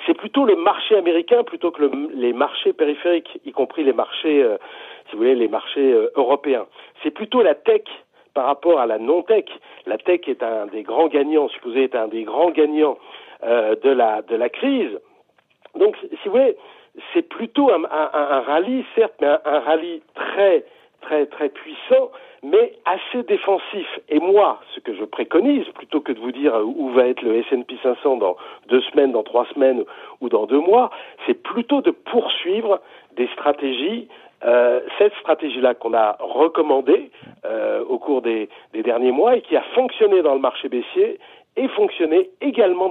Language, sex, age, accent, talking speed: French, male, 50-69, French, 180 wpm